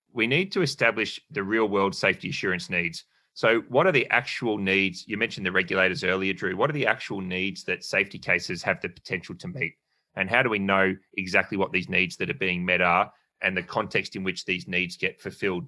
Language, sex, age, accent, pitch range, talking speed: English, male, 30-49, Australian, 90-110 Hz, 220 wpm